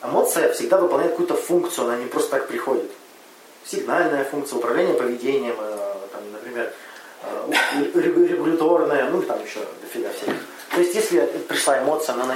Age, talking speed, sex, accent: 20-39, 140 wpm, male, native